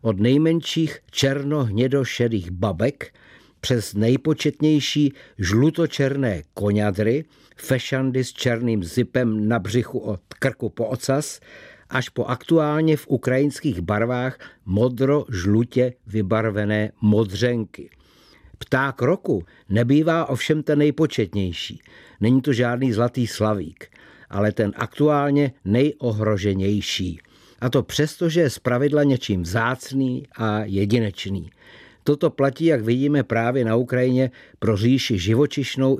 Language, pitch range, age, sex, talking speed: Czech, 110-140 Hz, 50-69, male, 105 wpm